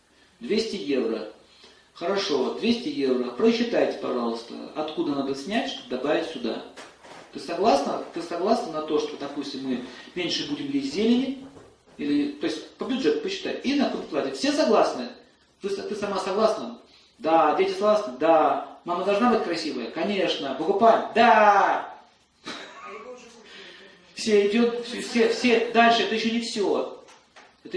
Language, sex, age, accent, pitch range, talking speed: Russian, male, 40-59, native, 185-255 Hz, 135 wpm